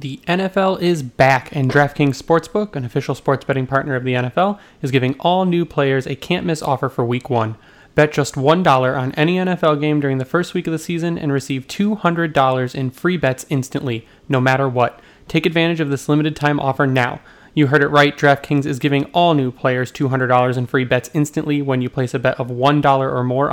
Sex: male